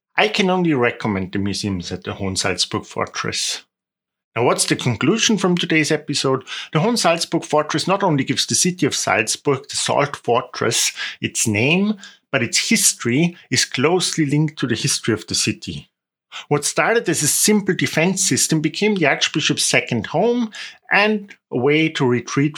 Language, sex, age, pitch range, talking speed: English, male, 50-69, 125-175 Hz, 160 wpm